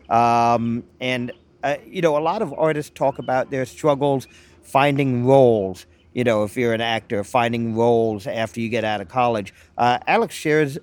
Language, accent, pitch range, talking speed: English, American, 120-150 Hz, 175 wpm